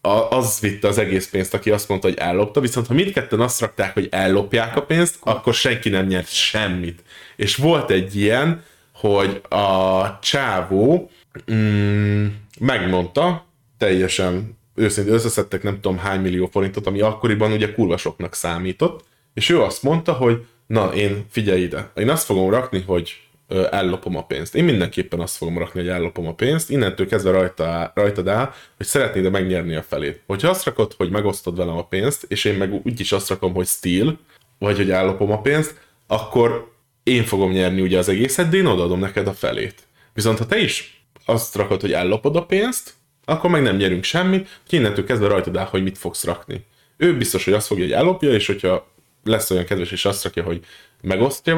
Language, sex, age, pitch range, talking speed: Hungarian, male, 20-39, 95-125 Hz, 180 wpm